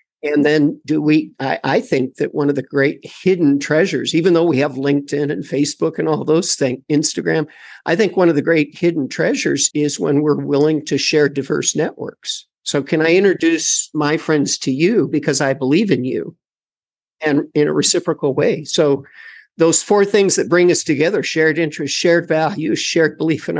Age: 50-69